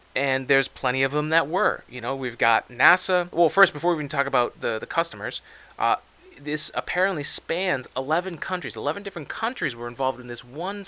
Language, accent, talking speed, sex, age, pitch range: English, American, 200 wpm, male, 30-49, 120-155 Hz